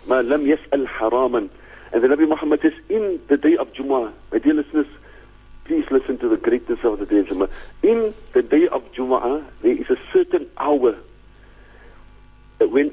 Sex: male